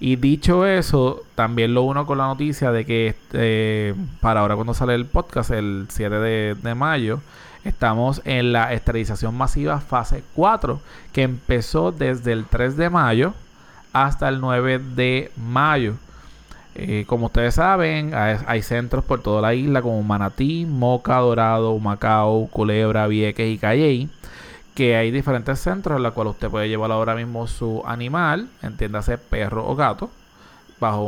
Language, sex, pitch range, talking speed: Spanish, male, 110-130 Hz, 155 wpm